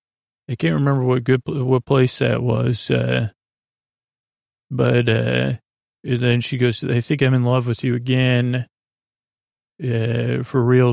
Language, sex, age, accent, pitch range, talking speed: English, male, 40-59, American, 120-130 Hz, 150 wpm